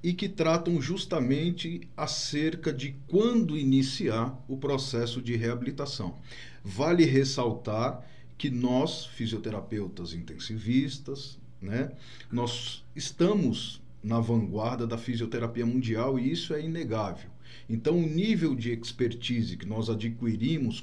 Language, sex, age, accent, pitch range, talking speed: Portuguese, male, 40-59, Brazilian, 110-140 Hz, 110 wpm